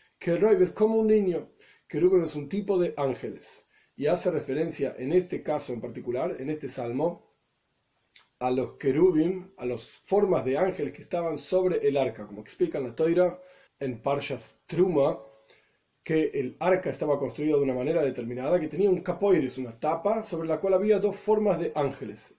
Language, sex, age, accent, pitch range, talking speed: Spanish, male, 40-59, Argentinian, 135-185 Hz, 175 wpm